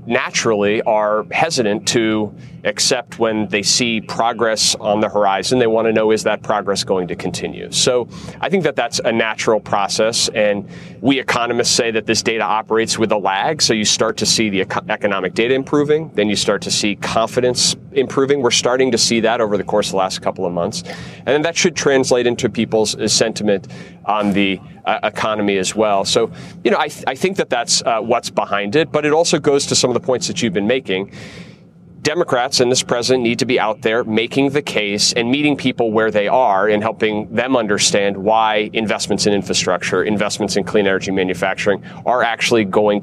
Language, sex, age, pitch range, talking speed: English, male, 30-49, 105-130 Hz, 200 wpm